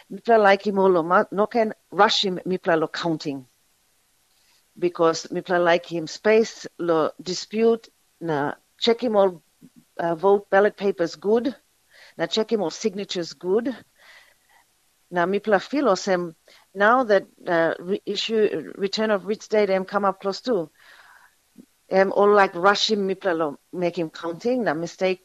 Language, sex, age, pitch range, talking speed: English, female, 40-59, 160-210 Hz, 150 wpm